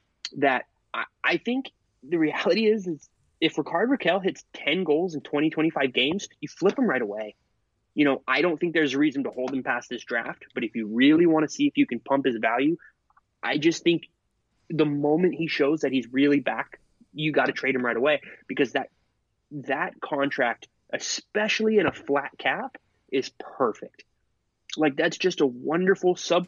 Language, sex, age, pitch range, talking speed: English, male, 20-39, 130-175 Hz, 190 wpm